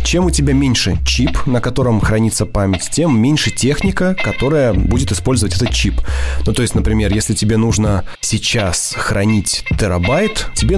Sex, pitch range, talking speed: male, 90-120 Hz, 155 wpm